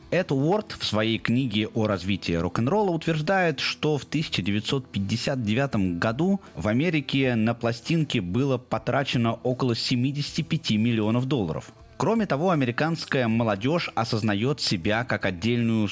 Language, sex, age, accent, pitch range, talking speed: Russian, male, 30-49, native, 110-140 Hz, 115 wpm